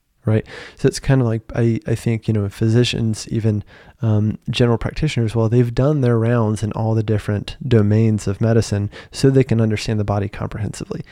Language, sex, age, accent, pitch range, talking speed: English, male, 20-39, American, 105-125 Hz, 190 wpm